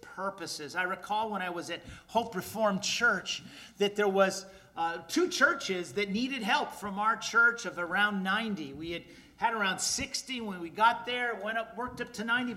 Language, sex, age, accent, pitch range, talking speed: English, male, 40-59, American, 185-240 Hz, 190 wpm